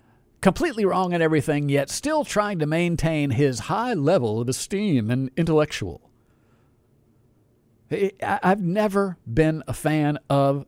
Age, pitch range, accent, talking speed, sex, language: 50-69, 125-180 Hz, American, 125 wpm, male, English